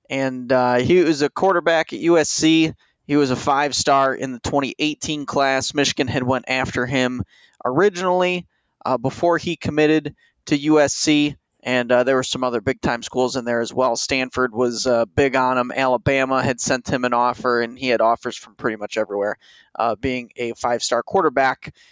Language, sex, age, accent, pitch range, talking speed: English, male, 20-39, American, 130-155 Hz, 180 wpm